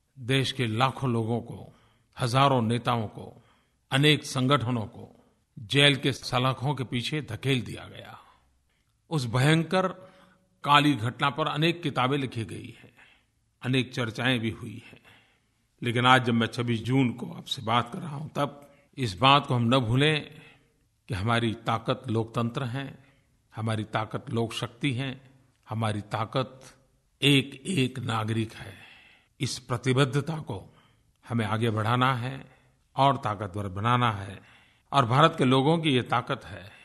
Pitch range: 115-140 Hz